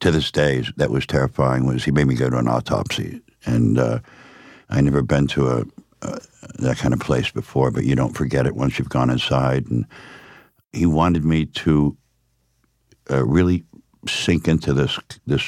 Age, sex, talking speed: 60-79, male, 180 wpm